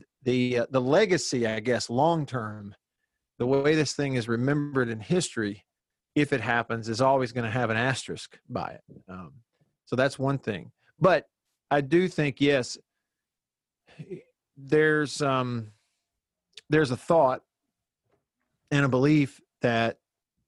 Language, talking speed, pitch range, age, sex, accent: English, 135 wpm, 120-145 Hz, 40-59, male, American